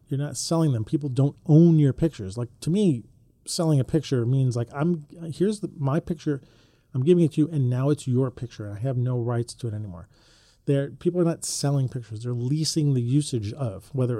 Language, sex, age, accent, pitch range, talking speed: English, male, 40-59, American, 120-155 Hz, 220 wpm